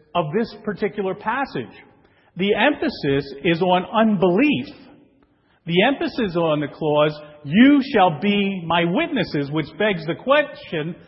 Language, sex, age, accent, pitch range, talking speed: English, male, 40-59, American, 160-230 Hz, 125 wpm